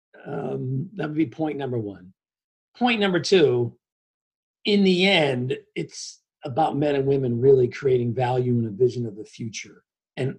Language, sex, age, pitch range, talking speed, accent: English, male, 40-59, 120-150 Hz, 160 wpm, American